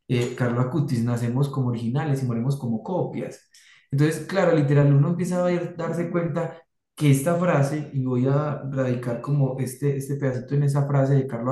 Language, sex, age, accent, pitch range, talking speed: Spanish, male, 20-39, Colombian, 125-150 Hz, 175 wpm